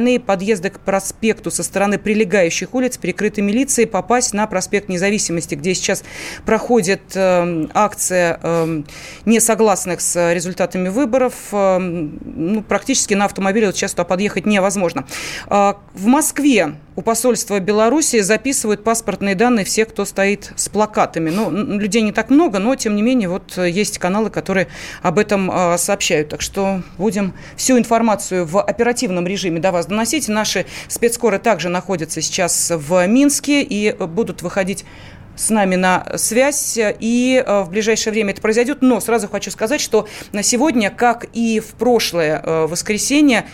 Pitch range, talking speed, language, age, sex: 185-225 Hz, 145 wpm, Russian, 30-49, female